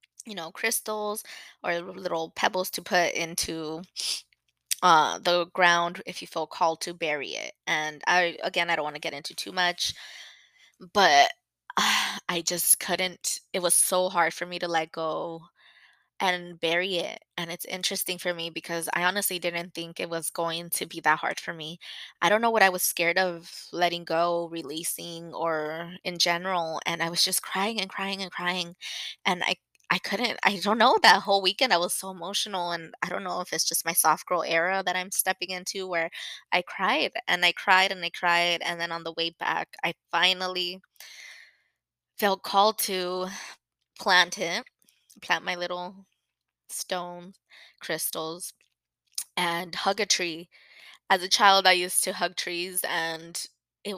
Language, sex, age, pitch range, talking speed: English, female, 20-39, 165-185 Hz, 175 wpm